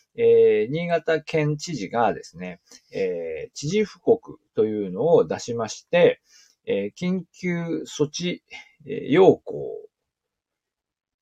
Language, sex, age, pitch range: Japanese, male, 40-59, 135-215 Hz